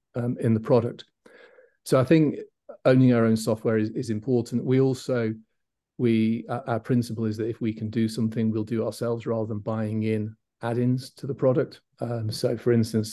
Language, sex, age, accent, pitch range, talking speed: English, male, 40-59, British, 110-125 Hz, 190 wpm